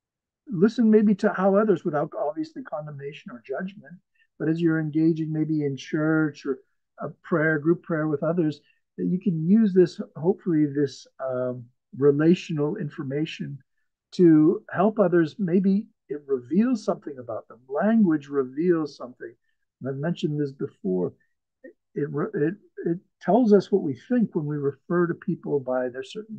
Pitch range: 150-200 Hz